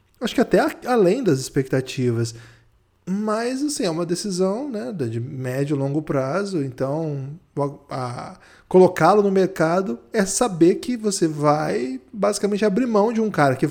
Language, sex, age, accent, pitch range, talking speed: Portuguese, male, 20-39, Brazilian, 140-195 Hz, 160 wpm